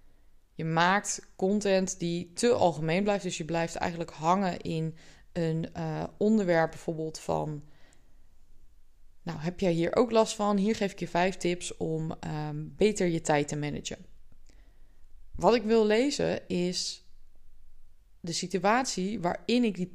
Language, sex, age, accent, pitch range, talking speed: Dutch, female, 20-39, Dutch, 160-200 Hz, 140 wpm